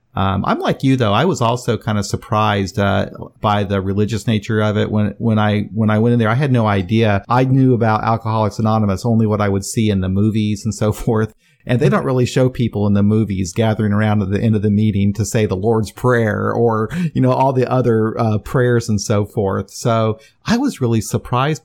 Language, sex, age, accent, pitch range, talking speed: English, male, 40-59, American, 100-115 Hz, 235 wpm